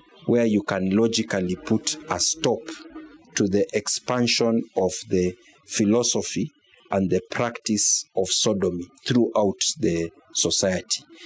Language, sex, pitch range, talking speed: English, male, 100-125 Hz, 110 wpm